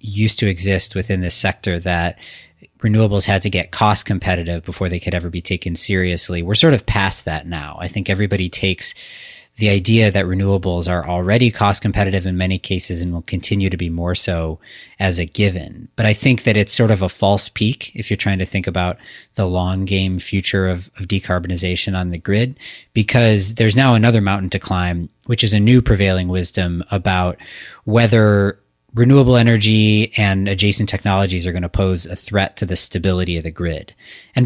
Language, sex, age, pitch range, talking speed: English, male, 30-49, 90-110 Hz, 190 wpm